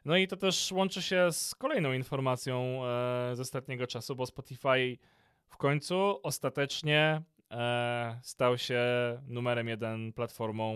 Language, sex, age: Polish, male, 20-39